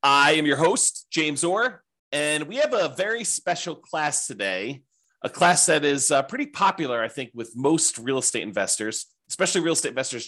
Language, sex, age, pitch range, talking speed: English, male, 30-49, 120-175 Hz, 185 wpm